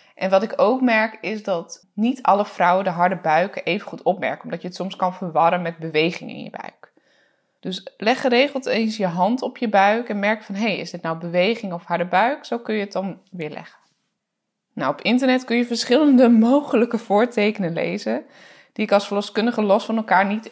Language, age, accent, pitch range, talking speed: English, 20-39, Dutch, 180-235 Hz, 210 wpm